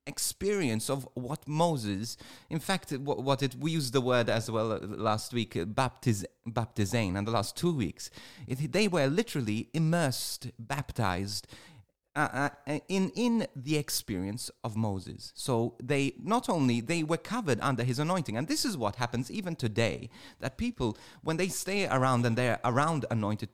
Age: 30-49